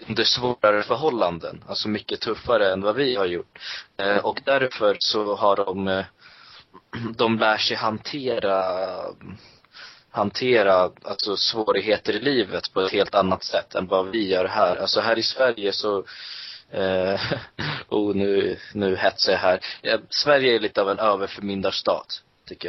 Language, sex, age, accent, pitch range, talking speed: Swedish, male, 20-39, native, 95-110 Hz, 145 wpm